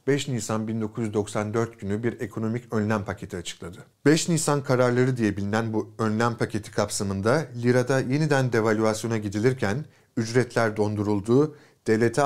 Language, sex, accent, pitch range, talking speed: Turkish, male, native, 110-140 Hz, 120 wpm